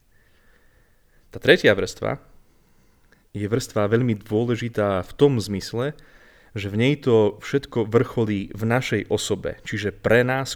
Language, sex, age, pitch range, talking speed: Slovak, male, 30-49, 100-120 Hz, 125 wpm